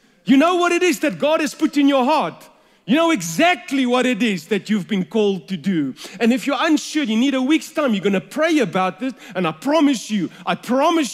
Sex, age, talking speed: male, 40-59, 240 wpm